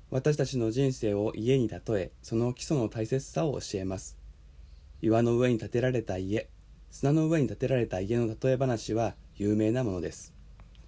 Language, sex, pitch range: Japanese, male, 100-140 Hz